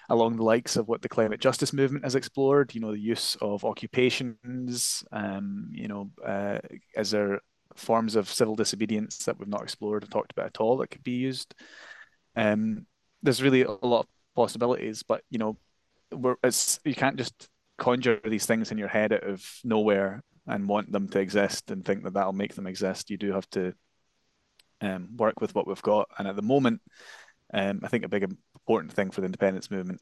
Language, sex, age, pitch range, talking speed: English, male, 20-39, 100-120 Hz, 200 wpm